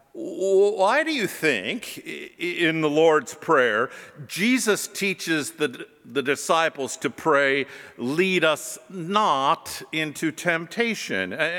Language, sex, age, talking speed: English, male, 50-69, 105 wpm